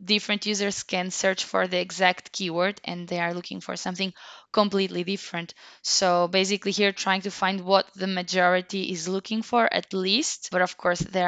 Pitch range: 180-200 Hz